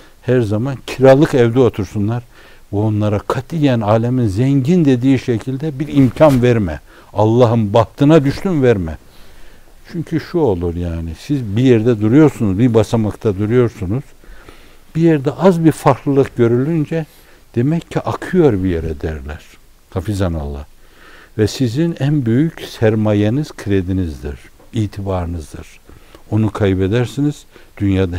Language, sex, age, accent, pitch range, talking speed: Turkish, male, 60-79, native, 95-135 Hz, 115 wpm